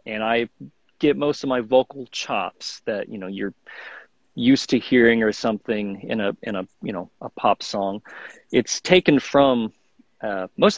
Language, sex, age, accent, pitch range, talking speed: English, male, 40-59, American, 110-135 Hz, 175 wpm